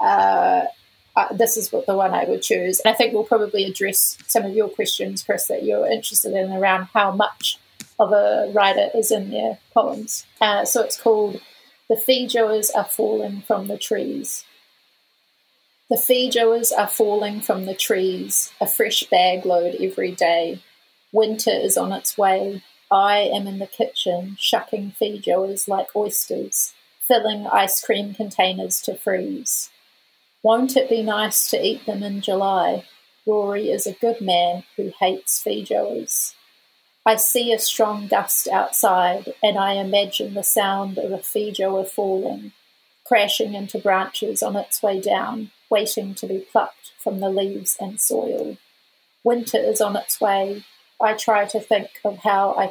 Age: 30-49